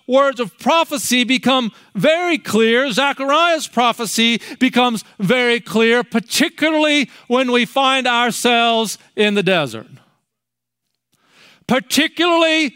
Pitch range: 185-255 Hz